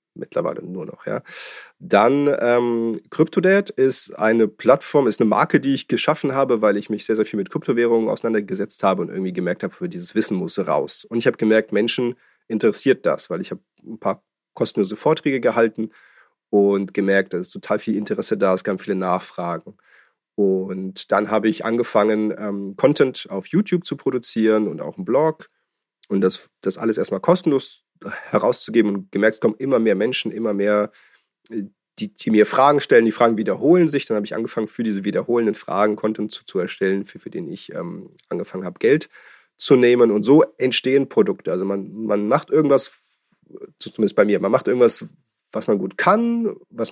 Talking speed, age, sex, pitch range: 185 wpm, 30-49, male, 105-140 Hz